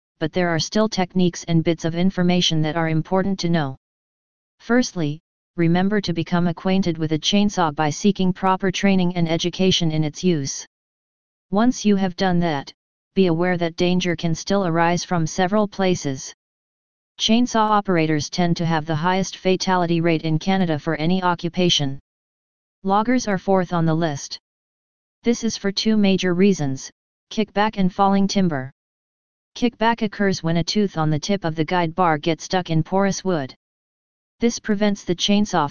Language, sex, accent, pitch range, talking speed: English, female, American, 165-195 Hz, 165 wpm